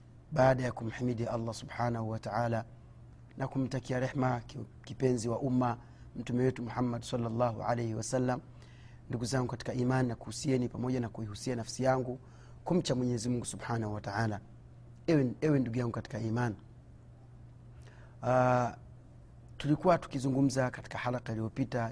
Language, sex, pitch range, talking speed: Swahili, male, 115-130 Hz, 130 wpm